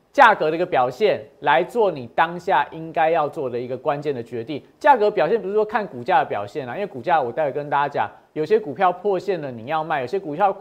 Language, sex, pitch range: Chinese, male, 150-215 Hz